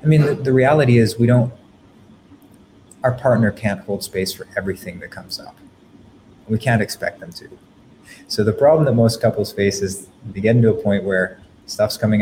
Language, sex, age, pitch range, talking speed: English, male, 30-49, 95-115 Hz, 190 wpm